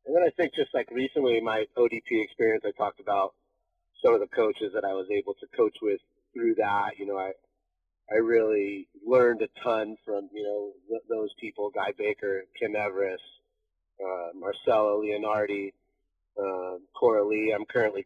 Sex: male